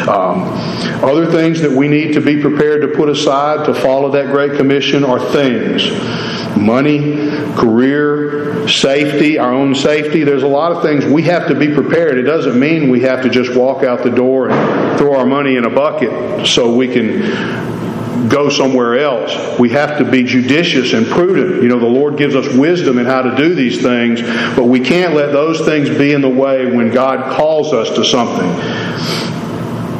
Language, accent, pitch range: English, American, 125-150 Hz